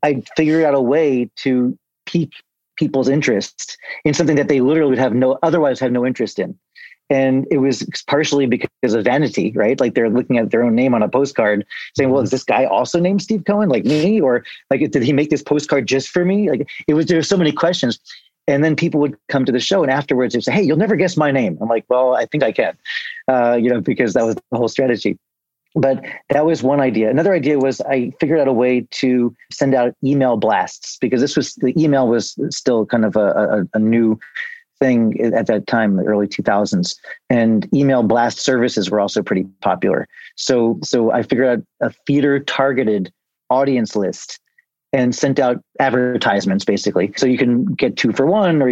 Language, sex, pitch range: English, male, 120-150 Hz